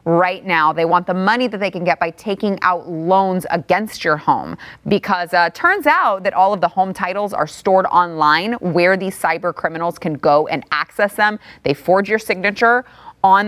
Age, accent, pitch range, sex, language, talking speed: 30-49, American, 170-210 Hz, female, English, 195 wpm